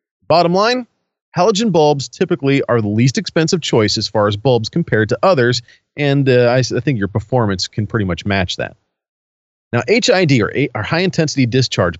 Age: 40-59